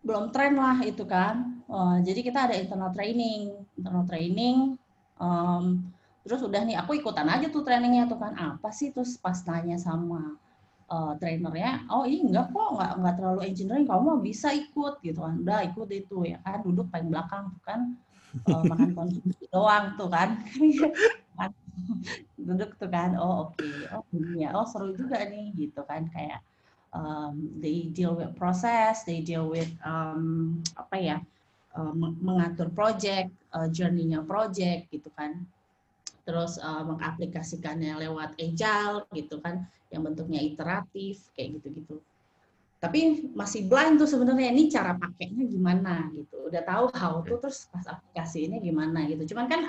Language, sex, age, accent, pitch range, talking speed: Indonesian, female, 20-39, native, 165-225 Hz, 150 wpm